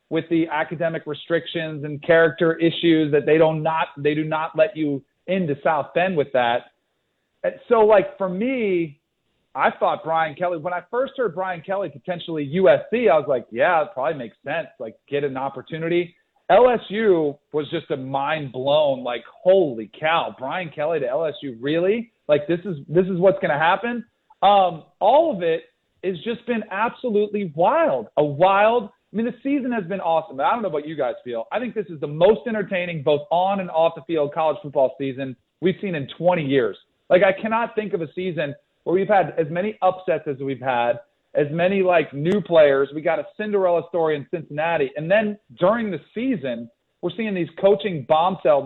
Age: 40-59